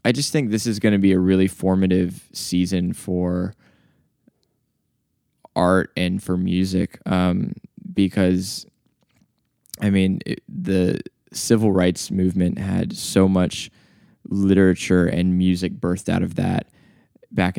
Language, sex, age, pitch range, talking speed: English, male, 20-39, 90-100 Hz, 125 wpm